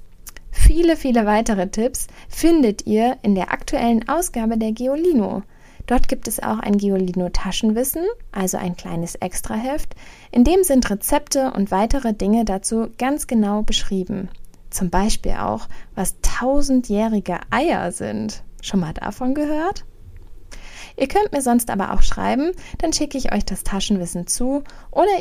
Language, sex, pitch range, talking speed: German, female, 195-270 Hz, 140 wpm